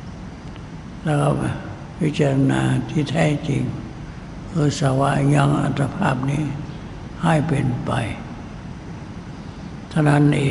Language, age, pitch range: Thai, 60-79, 135-155 Hz